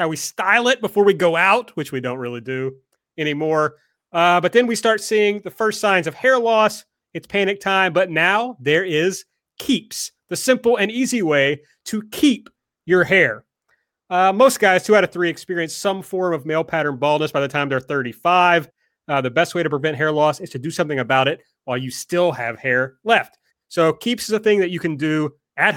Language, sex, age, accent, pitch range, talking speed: English, male, 30-49, American, 145-185 Hz, 215 wpm